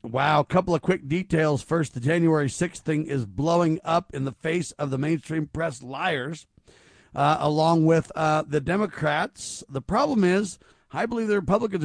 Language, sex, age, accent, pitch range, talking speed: English, male, 50-69, American, 140-175 Hz, 175 wpm